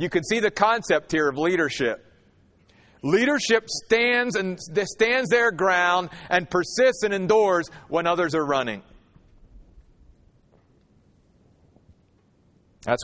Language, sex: English, male